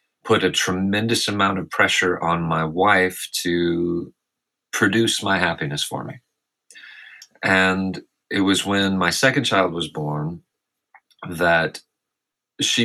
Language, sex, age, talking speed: English, male, 30-49, 120 wpm